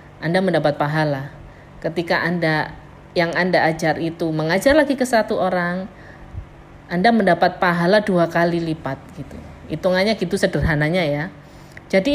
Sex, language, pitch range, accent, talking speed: female, Indonesian, 165-230 Hz, native, 130 wpm